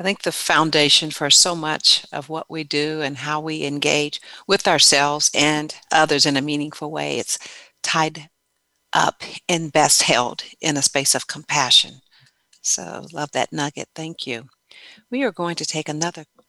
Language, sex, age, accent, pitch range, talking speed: English, female, 50-69, American, 155-190 Hz, 165 wpm